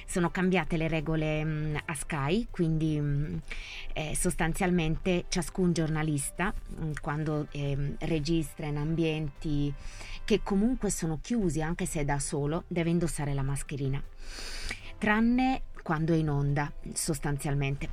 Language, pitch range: Italian, 145-185 Hz